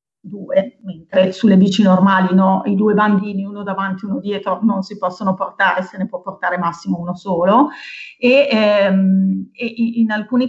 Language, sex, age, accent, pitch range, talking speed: Italian, female, 30-49, native, 185-225 Hz, 170 wpm